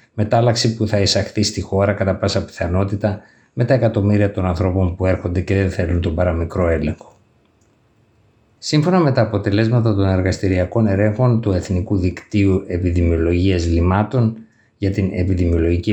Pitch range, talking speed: 90-110 Hz, 140 wpm